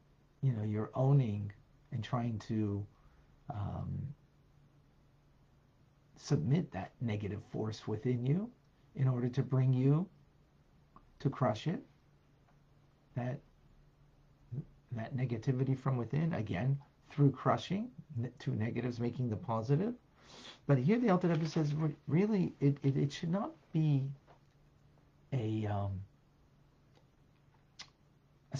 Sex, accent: male, American